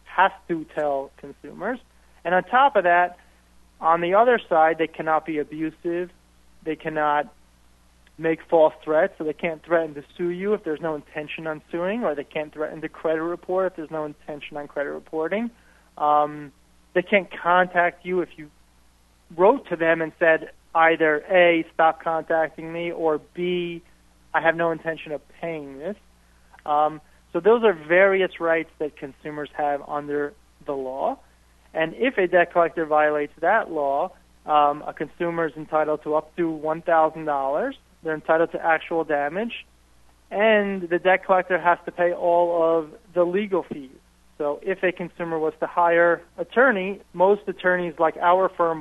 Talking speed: 165 wpm